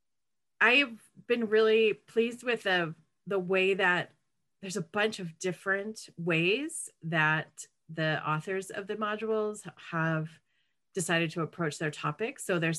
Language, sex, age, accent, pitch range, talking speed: English, female, 30-49, American, 155-200 Hz, 135 wpm